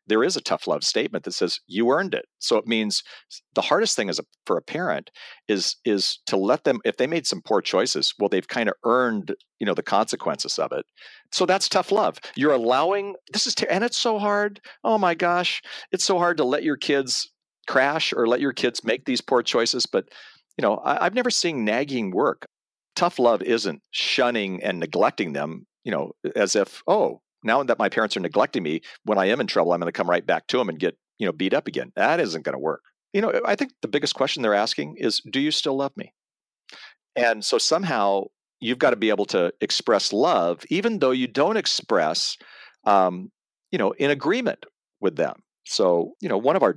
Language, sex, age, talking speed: English, male, 50-69, 220 wpm